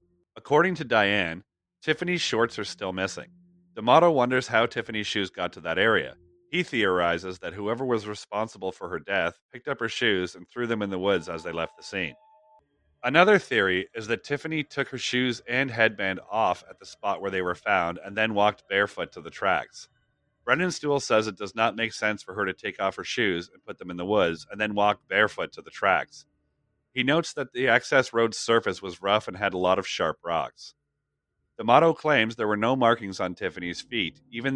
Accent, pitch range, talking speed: American, 95-125 Hz, 210 wpm